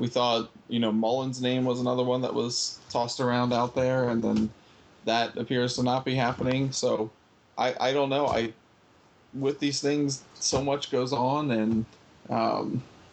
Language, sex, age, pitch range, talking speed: English, male, 20-39, 110-125 Hz, 175 wpm